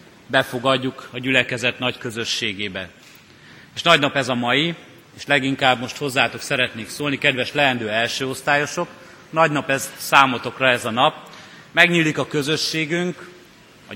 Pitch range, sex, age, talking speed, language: 125-150 Hz, male, 30-49, 130 wpm, Hungarian